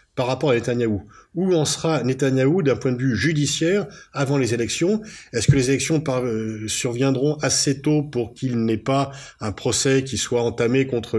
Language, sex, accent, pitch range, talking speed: French, male, French, 110-140 Hz, 180 wpm